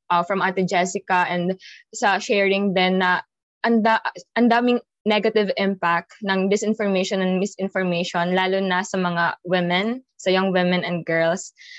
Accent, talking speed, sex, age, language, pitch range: native, 145 wpm, female, 20-39, Filipino, 185-220 Hz